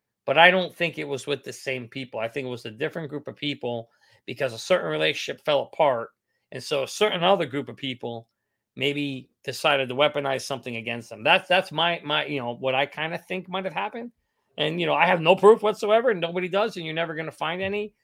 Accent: American